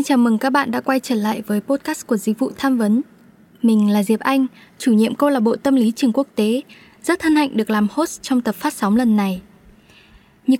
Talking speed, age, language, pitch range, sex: 245 wpm, 10-29, Vietnamese, 210-270 Hz, female